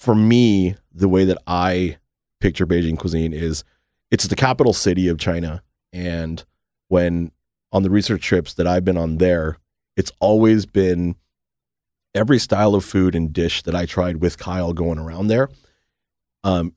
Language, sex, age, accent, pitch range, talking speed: English, male, 30-49, American, 80-100 Hz, 160 wpm